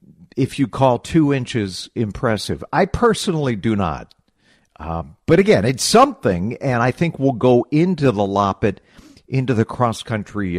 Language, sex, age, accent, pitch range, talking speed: English, male, 50-69, American, 95-140 Hz, 145 wpm